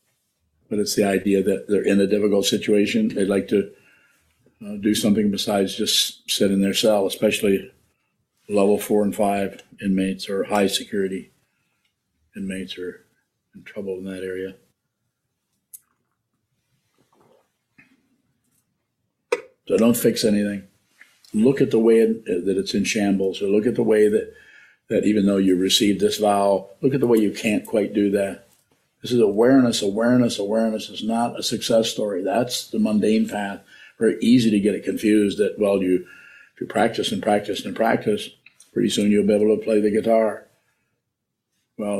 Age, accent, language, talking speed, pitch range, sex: 50-69, American, English, 160 wpm, 100-110 Hz, male